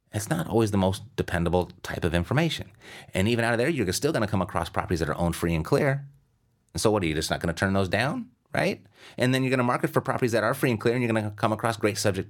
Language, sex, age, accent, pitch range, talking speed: English, male, 30-49, American, 85-115 Hz, 300 wpm